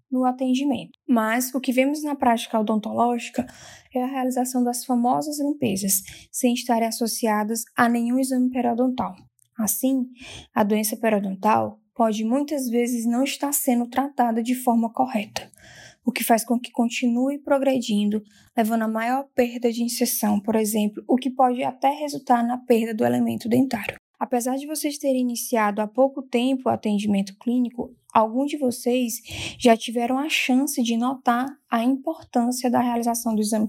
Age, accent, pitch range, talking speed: 10-29, Brazilian, 225-260 Hz, 155 wpm